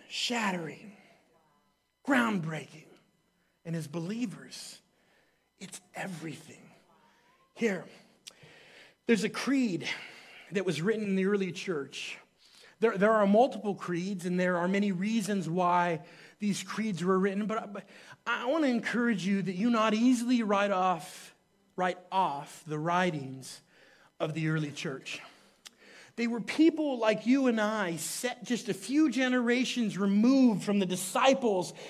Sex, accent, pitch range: male, American, 190-275 Hz